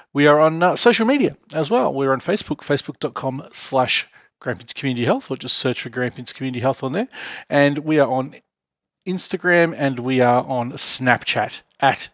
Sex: male